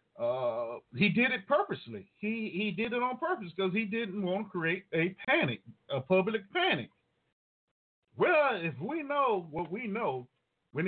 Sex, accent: male, American